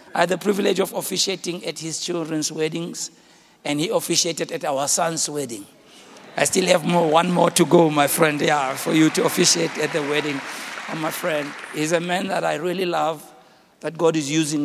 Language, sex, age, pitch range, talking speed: English, male, 60-79, 150-175 Hz, 200 wpm